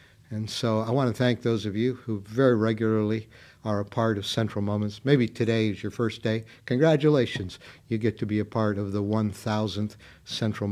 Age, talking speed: 60-79, 195 wpm